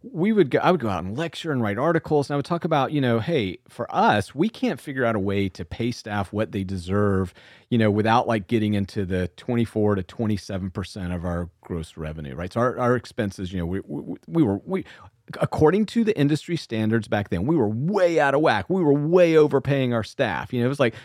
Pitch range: 110-150 Hz